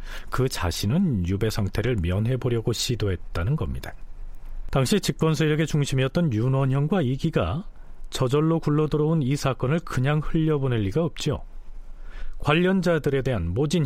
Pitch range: 100-160 Hz